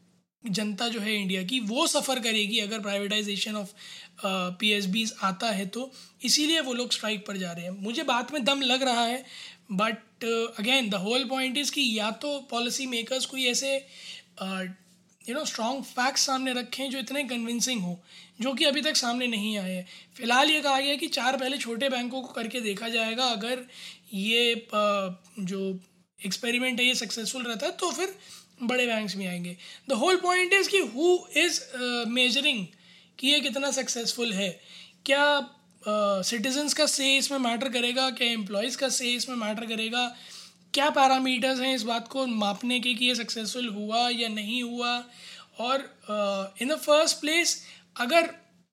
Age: 20-39